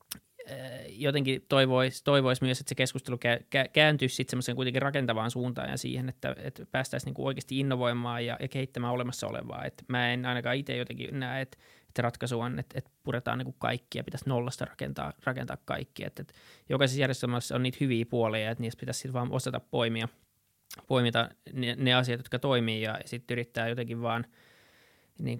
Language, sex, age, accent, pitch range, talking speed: Finnish, male, 20-39, native, 115-130 Hz, 170 wpm